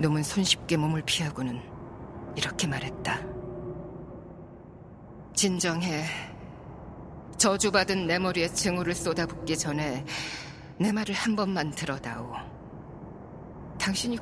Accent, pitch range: native, 145-185 Hz